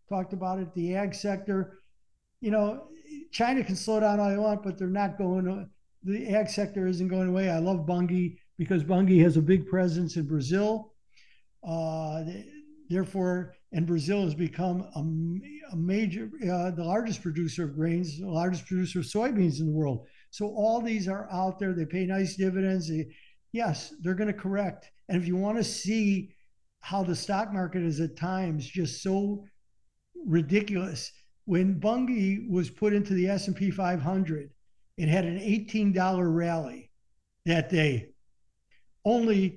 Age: 60-79